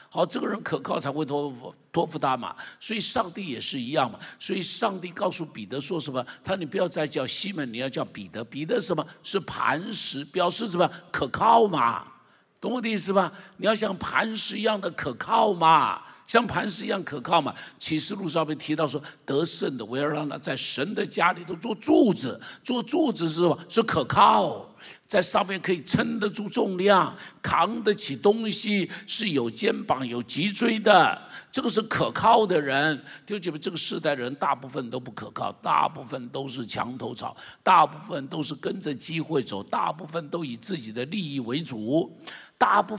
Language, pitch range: Chinese, 150-210 Hz